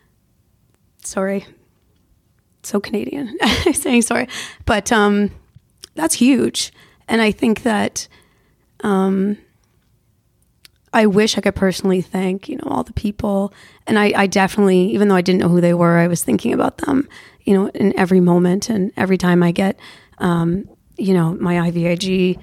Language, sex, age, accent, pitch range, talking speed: English, female, 30-49, American, 180-205 Hz, 155 wpm